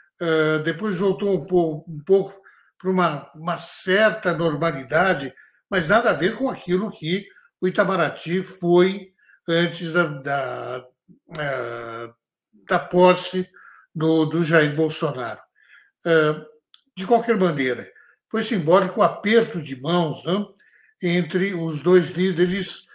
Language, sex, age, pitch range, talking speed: Portuguese, male, 60-79, 160-195 Hz, 105 wpm